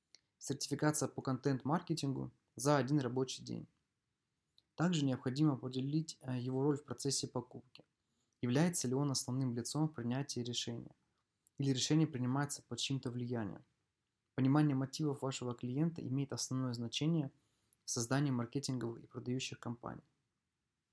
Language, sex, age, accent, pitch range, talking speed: Russian, male, 20-39, native, 125-145 Hz, 120 wpm